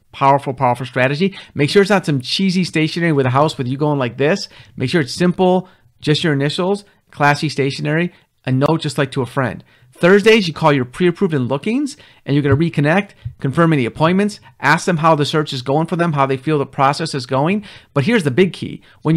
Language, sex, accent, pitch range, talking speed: English, male, American, 130-170 Hz, 220 wpm